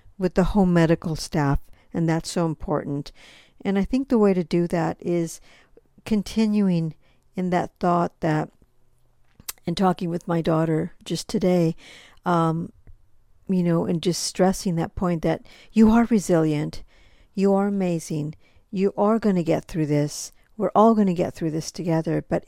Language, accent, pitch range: English, American, 165-190 Hz